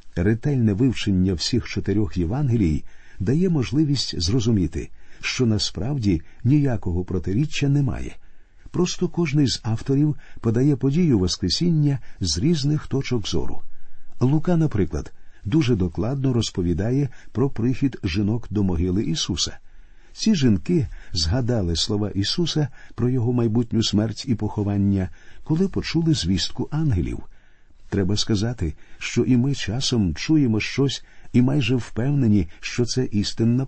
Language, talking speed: Ukrainian, 115 wpm